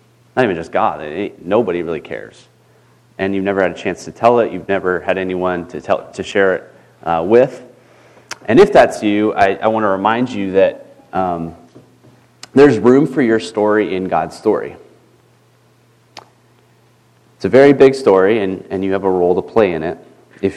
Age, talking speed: 30-49, 190 wpm